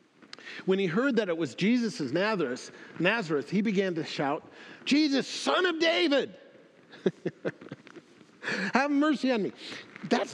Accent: American